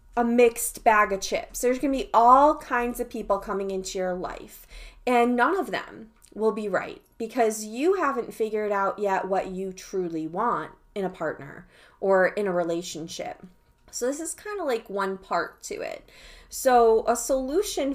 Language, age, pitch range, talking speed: English, 20-39, 200-250 Hz, 180 wpm